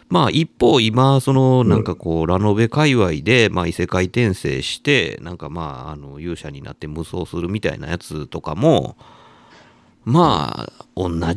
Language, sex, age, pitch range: Japanese, male, 50-69, 85-135 Hz